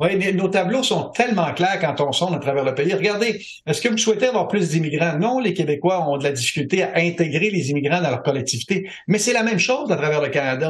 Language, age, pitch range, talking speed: French, 60-79, 150-200 Hz, 245 wpm